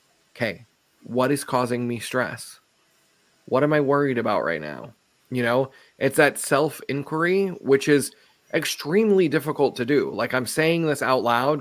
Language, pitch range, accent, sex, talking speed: English, 120-145 Hz, American, male, 155 wpm